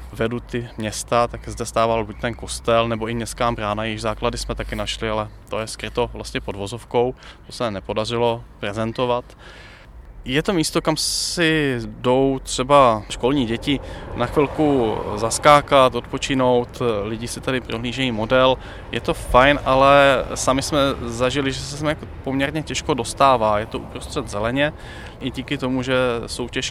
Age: 20-39